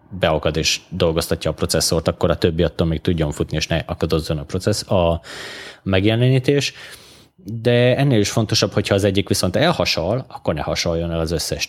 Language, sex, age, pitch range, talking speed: Hungarian, male, 20-39, 85-105 Hz, 175 wpm